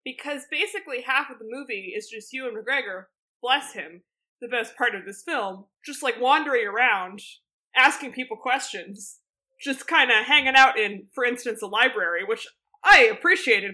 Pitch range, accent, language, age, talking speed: 190-300 Hz, American, English, 20-39, 165 wpm